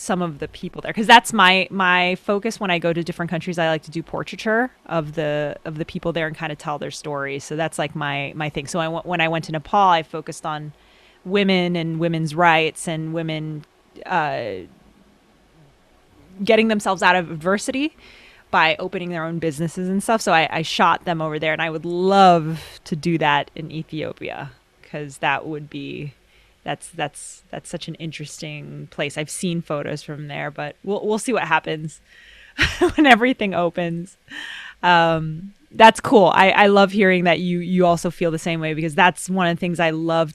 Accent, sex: American, female